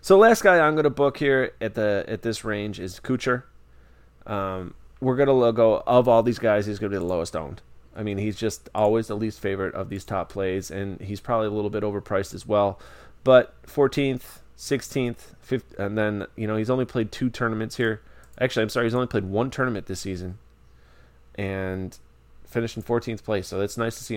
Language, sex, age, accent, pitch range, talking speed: English, male, 20-39, American, 95-115 Hz, 215 wpm